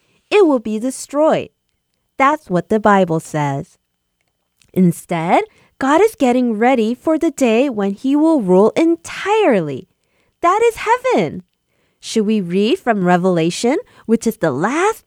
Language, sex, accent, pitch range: Korean, female, American, 195-325 Hz